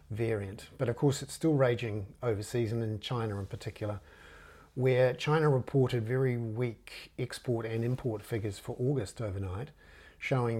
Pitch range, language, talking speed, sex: 105-120 Hz, English, 145 wpm, male